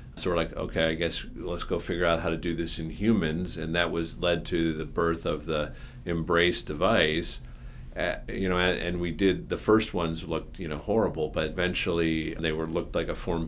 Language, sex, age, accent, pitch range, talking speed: English, male, 40-59, American, 80-90 Hz, 215 wpm